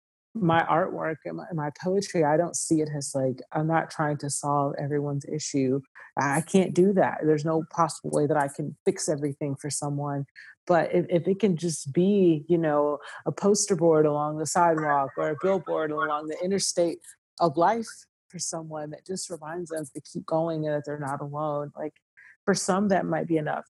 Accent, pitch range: American, 140-170 Hz